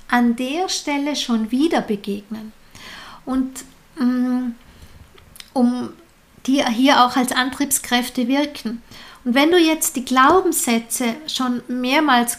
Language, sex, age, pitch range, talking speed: German, female, 50-69, 235-300 Hz, 105 wpm